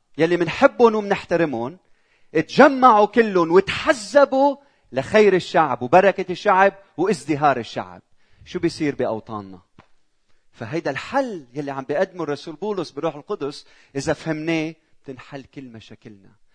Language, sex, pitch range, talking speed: Arabic, male, 115-180 Hz, 110 wpm